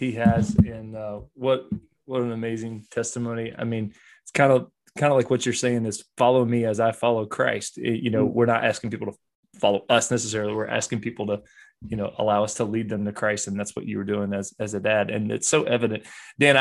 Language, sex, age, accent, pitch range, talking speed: English, male, 20-39, American, 115-145 Hz, 240 wpm